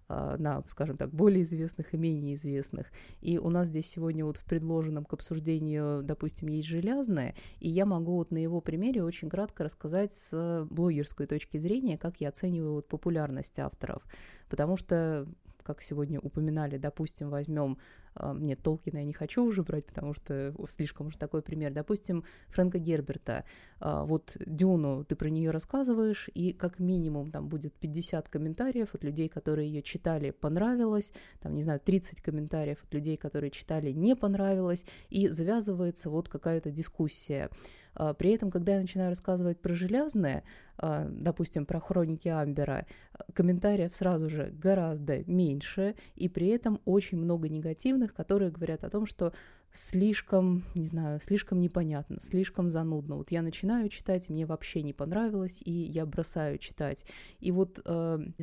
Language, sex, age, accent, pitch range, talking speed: Russian, female, 20-39, native, 155-190 Hz, 150 wpm